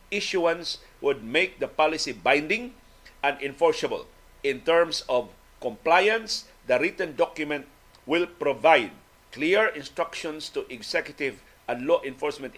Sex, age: male, 50-69